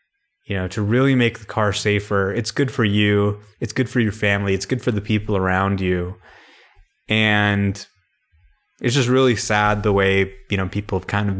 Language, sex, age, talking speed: English, male, 20-39, 195 wpm